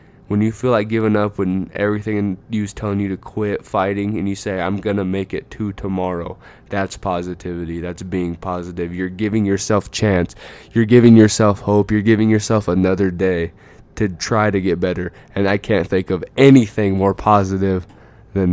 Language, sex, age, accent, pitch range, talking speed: English, male, 20-39, American, 95-110 Hz, 180 wpm